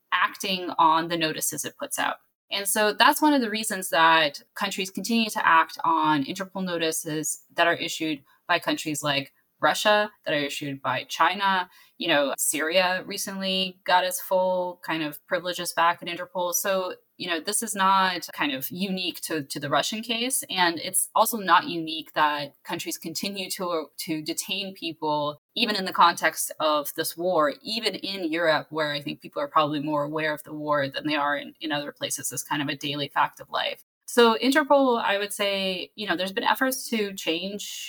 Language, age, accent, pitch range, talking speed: English, 20-39, American, 160-210 Hz, 190 wpm